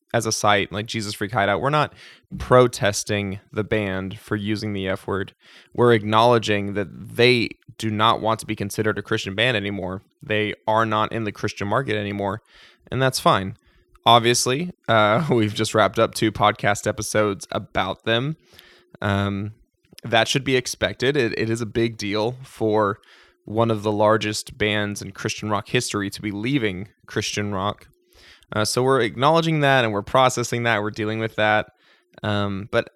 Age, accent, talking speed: 20-39, American, 170 wpm